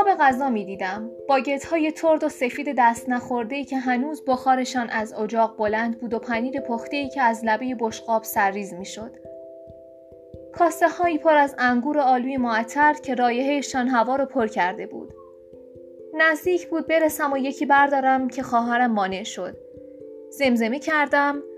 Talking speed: 155 wpm